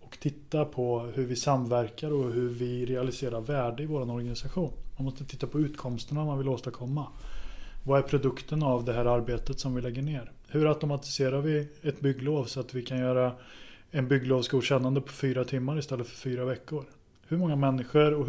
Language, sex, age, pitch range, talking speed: Swedish, male, 20-39, 120-140 Hz, 185 wpm